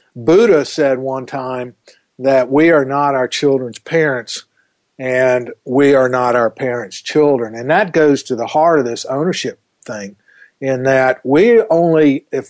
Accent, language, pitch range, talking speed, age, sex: American, English, 125-150 Hz, 160 wpm, 50-69, male